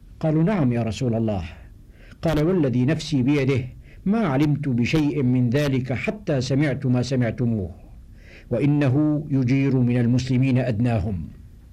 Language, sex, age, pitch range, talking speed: Arabic, male, 60-79, 125-160 Hz, 120 wpm